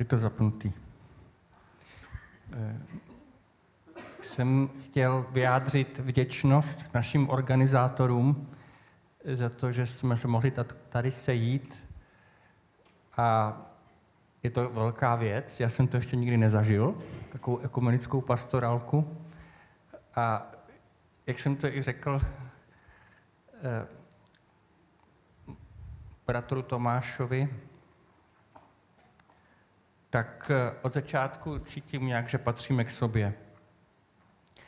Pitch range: 120-145 Hz